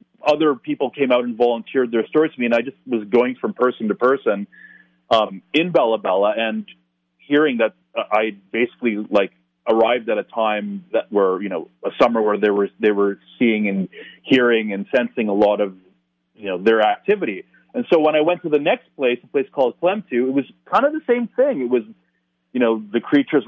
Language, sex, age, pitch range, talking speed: English, male, 30-49, 105-135 Hz, 210 wpm